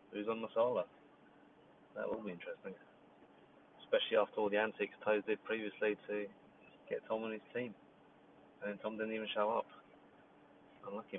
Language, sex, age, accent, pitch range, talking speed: English, male, 30-49, British, 105-130 Hz, 150 wpm